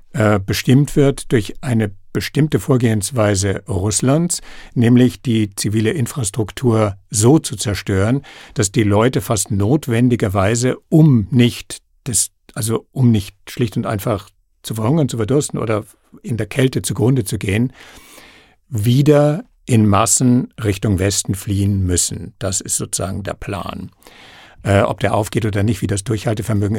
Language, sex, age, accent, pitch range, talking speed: German, male, 60-79, German, 100-125 Hz, 135 wpm